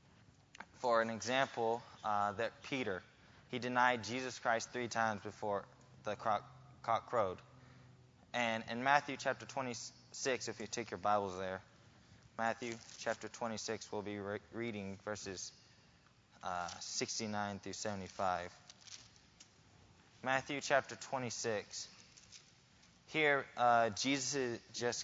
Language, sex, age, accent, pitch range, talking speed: English, male, 10-29, American, 105-125 Hz, 110 wpm